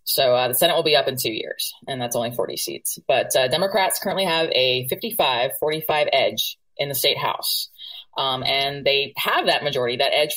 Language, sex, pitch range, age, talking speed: English, female, 130-195 Hz, 20-39, 205 wpm